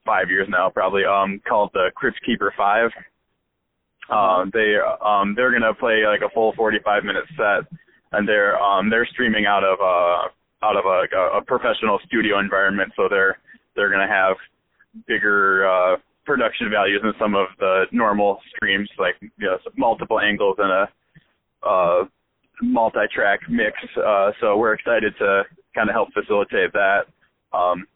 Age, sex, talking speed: 20-39, male, 160 wpm